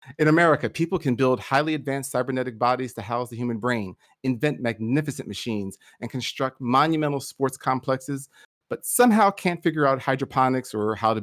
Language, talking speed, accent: English, 165 wpm, American